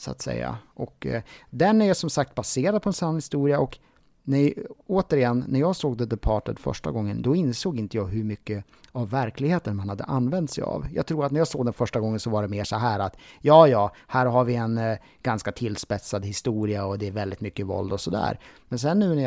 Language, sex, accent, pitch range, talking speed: Swedish, male, Norwegian, 110-145 Hz, 225 wpm